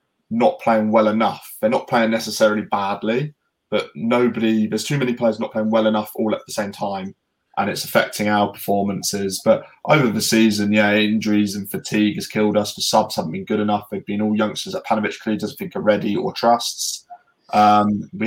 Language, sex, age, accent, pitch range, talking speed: English, male, 20-39, British, 105-120 Hz, 195 wpm